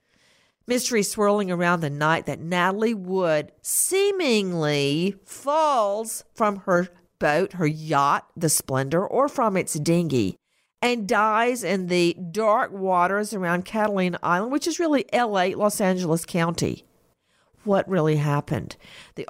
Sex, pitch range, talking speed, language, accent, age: female, 170-215 Hz, 125 wpm, English, American, 50-69